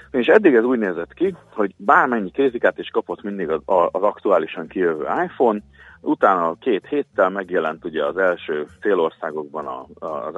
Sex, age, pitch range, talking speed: male, 40-59, 90-130 Hz, 145 wpm